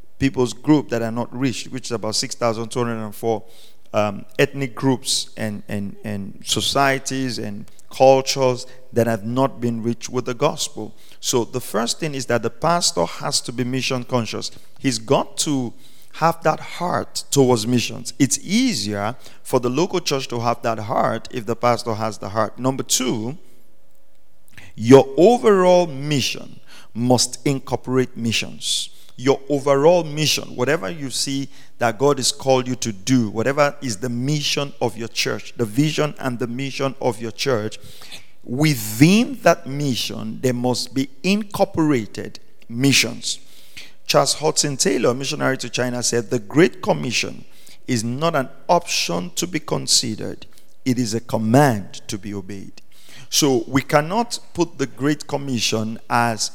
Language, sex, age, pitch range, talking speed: English, male, 50-69, 115-140 Hz, 145 wpm